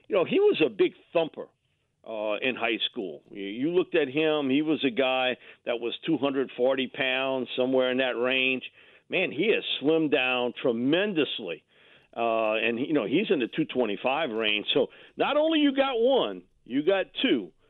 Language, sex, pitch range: English, male, 110-140 Hz